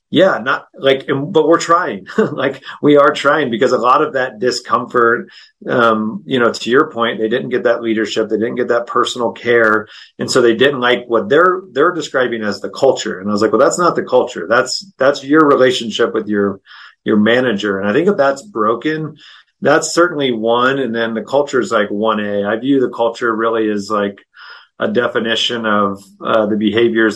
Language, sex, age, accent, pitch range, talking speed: English, male, 30-49, American, 110-125 Hz, 200 wpm